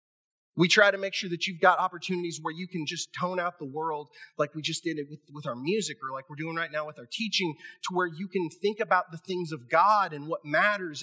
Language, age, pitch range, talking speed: English, 30-49, 175-270 Hz, 260 wpm